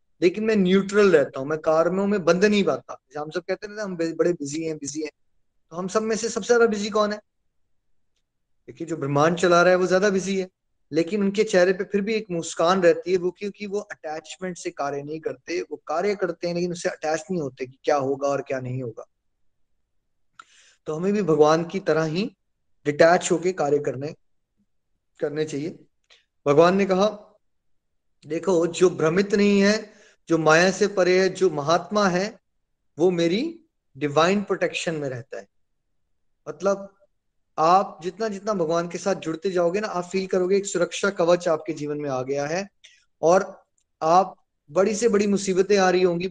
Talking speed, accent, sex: 185 wpm, native, male